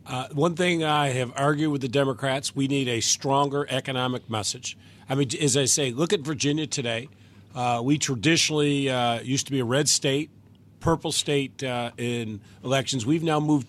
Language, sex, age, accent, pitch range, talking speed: English, male, 50-69, American, 120-150 Hz, 185 wpm